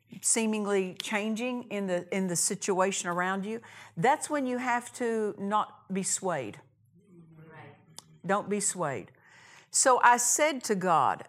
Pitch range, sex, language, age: 155-205 Hz, female, English, 50-69